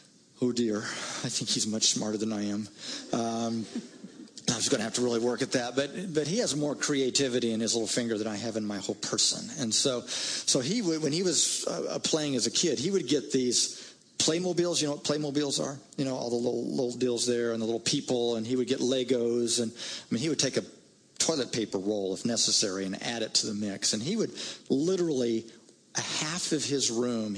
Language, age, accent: English, 50-69, American